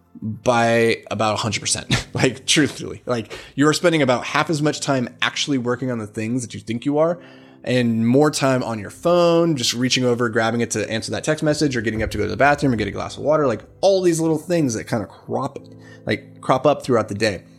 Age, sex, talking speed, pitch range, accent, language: 20-39, male, 235 wpm, 105-135 Hz, American, English